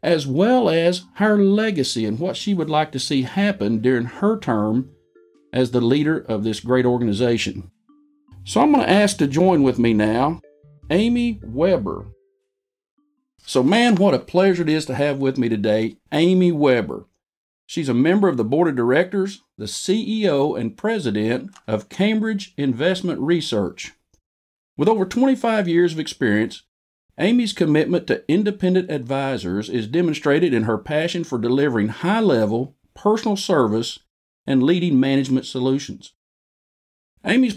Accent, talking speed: American, 145 wpm